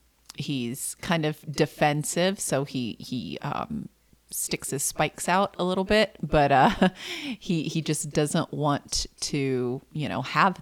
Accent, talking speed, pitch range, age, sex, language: American, 145 wpm, 135-165 Hz, 30-49, female, English